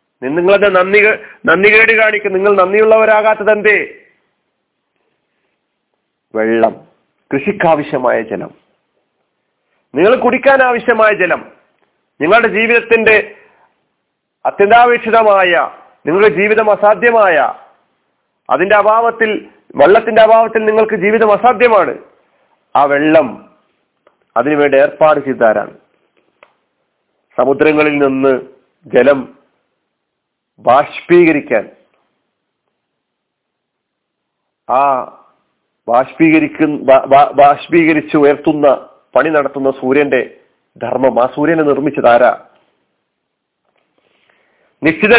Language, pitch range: Malayalam, 160-230 Hz